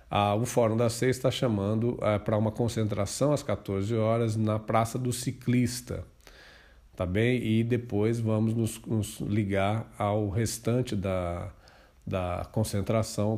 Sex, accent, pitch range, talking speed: male, Brazilian, 100-120 Hz, 125 wpm